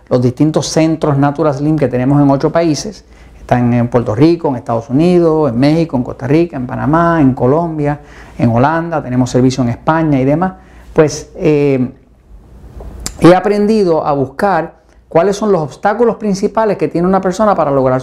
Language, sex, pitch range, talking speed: Spanish, male, 135-185 Hz, 165 wpm